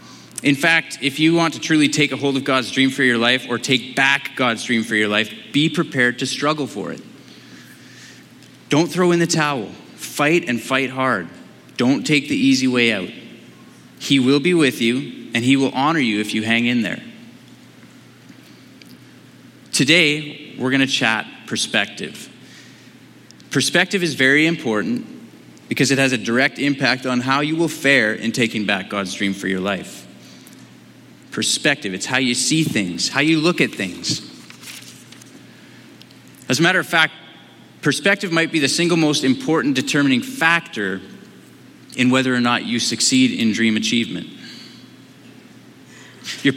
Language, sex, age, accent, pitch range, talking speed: English, male, 20-39, American, 120-155 Hz, 160 wpm